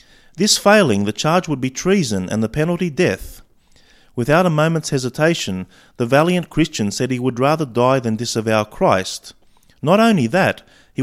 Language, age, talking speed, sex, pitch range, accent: English, 30-49, 165 wpm, male, 115-155 Hz, Australian